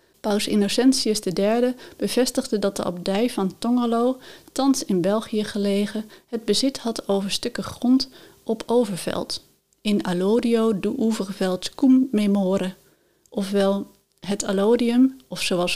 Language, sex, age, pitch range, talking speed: Dutch, female, 30-49, 200-240 Hz, 120 wpm